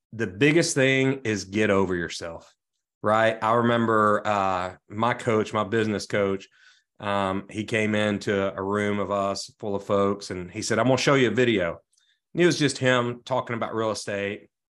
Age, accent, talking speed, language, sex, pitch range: 40-59, American, 180 wpm, English, male, 100-135 Hz